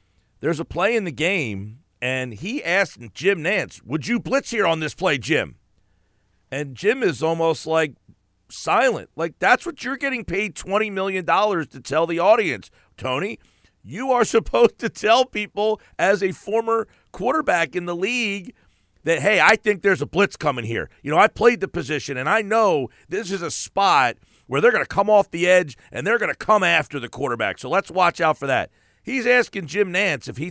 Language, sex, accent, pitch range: English, male, American, 130-200 Hz